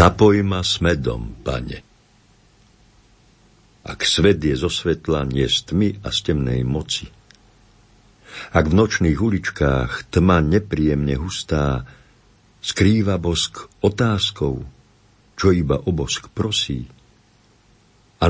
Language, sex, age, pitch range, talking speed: Slovak, male, 50-69, 75-105 Hz, 110 wpm